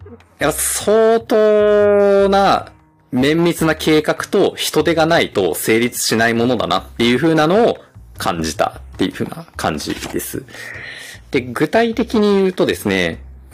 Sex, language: male, Japanese